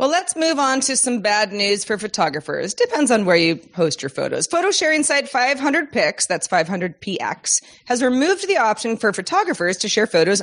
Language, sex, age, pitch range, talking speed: English, female, 30-49, 190-255 Hz, 185 wpm